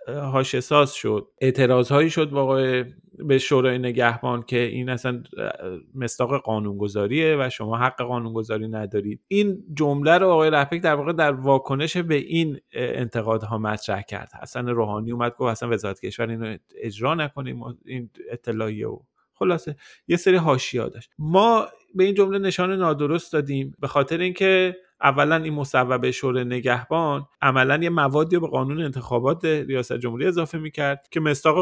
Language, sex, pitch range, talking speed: Persian, male, 115-155 Hz, 155 wpm